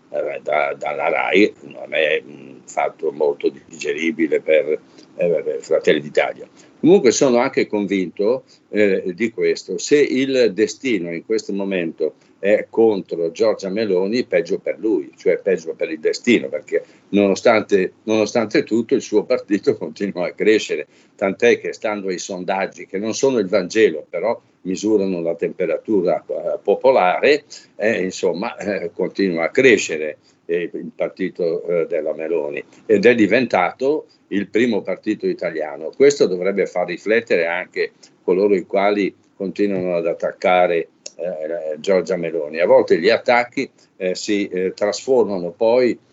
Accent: native